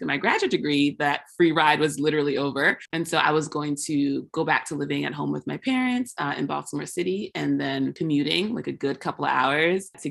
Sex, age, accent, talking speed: female, 20-39, American, 225 wpm